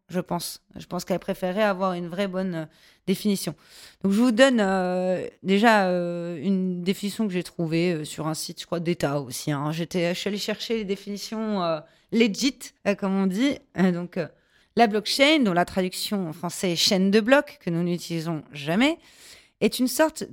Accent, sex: French, female